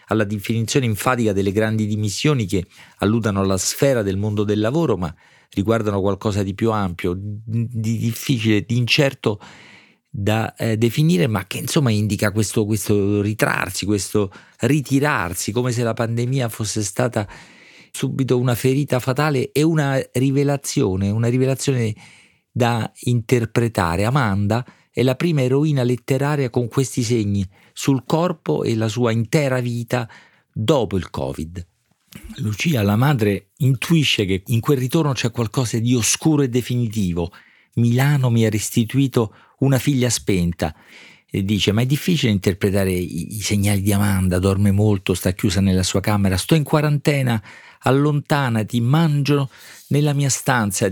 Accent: native